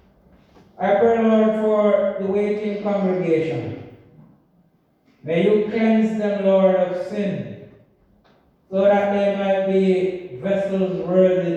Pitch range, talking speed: 160-205 Hz, 110 wpm